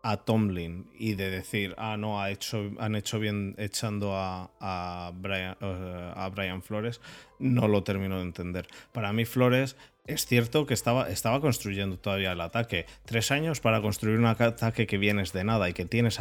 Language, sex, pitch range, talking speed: Spanish, male, 95-120 Hz, 185 wpm